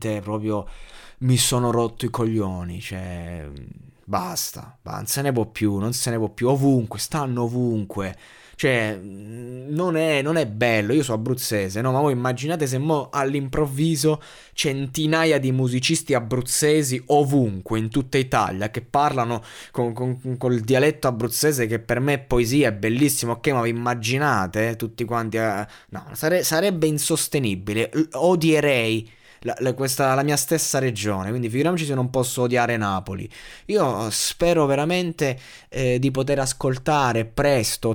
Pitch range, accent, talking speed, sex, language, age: 115-150 Hz, native, 145 wpm, male, Italian, 20-39